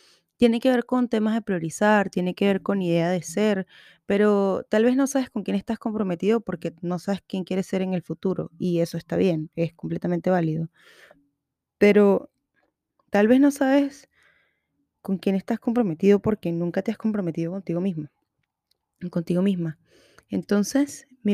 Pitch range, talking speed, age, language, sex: 180-230 Hz, 165 wpm, 20-39, Spanish, female